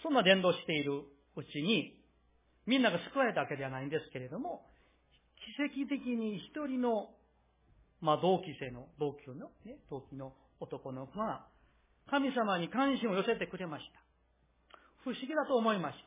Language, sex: Japanese, male